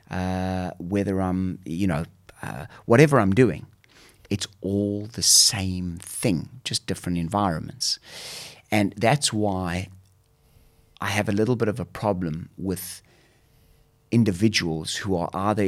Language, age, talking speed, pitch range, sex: English, 30-49, 125 wpm, 95-115 Hz, male